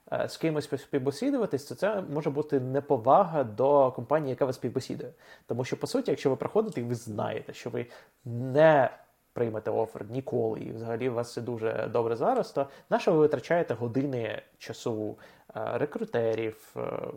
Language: Ukrainian